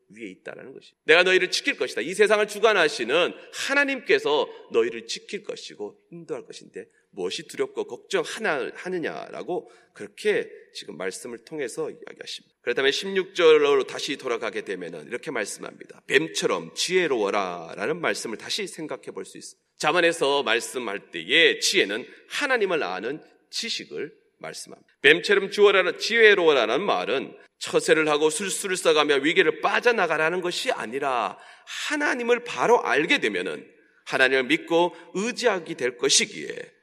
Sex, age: male, 30-49